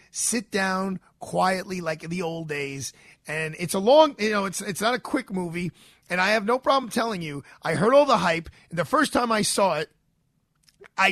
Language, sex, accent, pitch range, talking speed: English, male, American, 150-210 Hz, 215 wpm